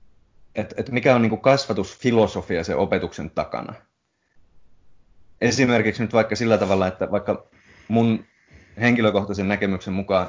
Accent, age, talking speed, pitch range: native, 30-49, 115 wpm, 95-110 Hz